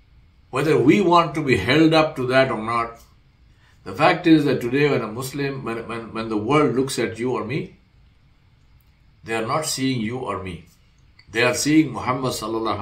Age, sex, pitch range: 60-79, male, 115-155 Hz